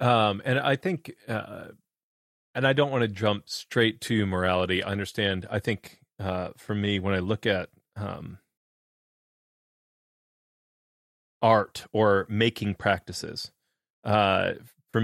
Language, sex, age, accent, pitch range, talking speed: English, male, 30-49, American, 95-115 Hz, 130 wpm